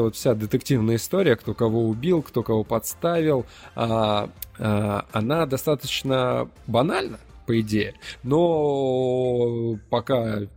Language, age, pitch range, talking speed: Russian, 20-39, 110-135 Hz, 95 wpm